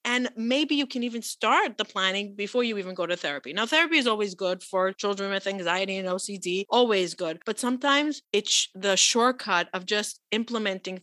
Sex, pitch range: female, 185-225 Hz